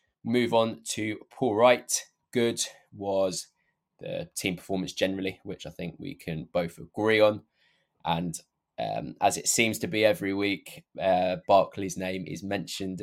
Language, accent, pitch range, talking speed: English, British, 90-105 Hz, 150 wpm